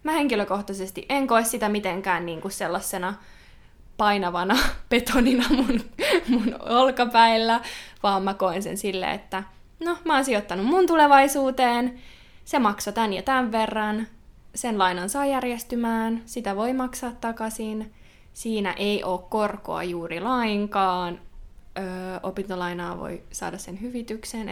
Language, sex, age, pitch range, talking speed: Finnish, female, 20-39, 205-260 Hz, 125 wpm